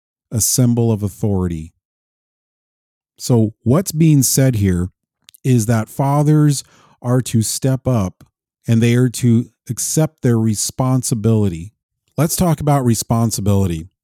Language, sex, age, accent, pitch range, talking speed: English, male, 40-59, American, 100-130 Hz, 115 wpm